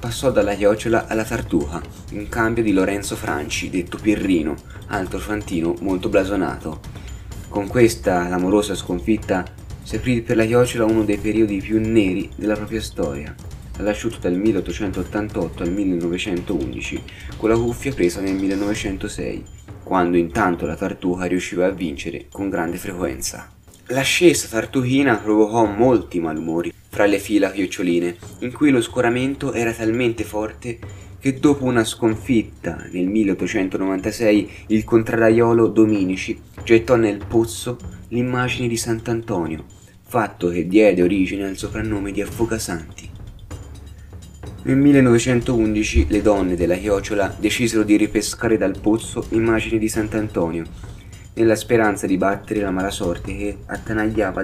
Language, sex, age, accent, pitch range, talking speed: Italian, male, 20-39, native, 95-115 Hz, 130 wpm